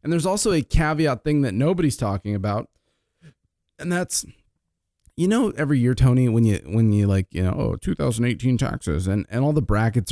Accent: American